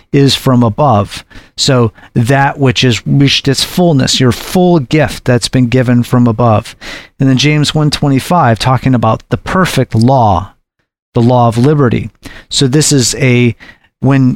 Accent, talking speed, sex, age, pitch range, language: American, 160 wpm, male, 40-59, 115-140 Hz, English